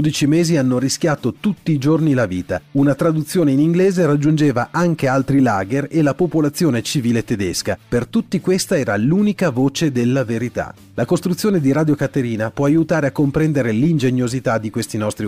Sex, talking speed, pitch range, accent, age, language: male, 170 wpm, 115-165 Hz, native, 40-59, Italian